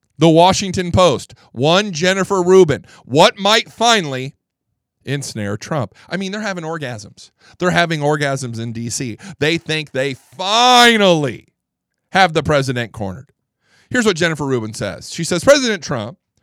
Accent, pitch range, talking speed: American, 125-205 Hz, 140 wpm